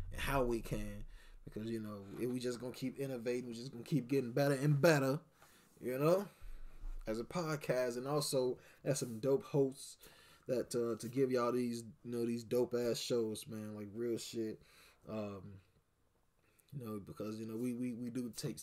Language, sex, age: English, male, 20-39